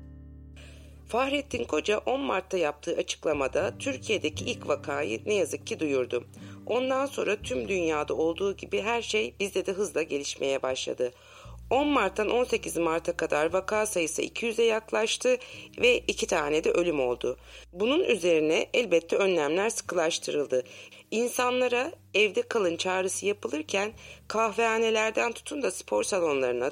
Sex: female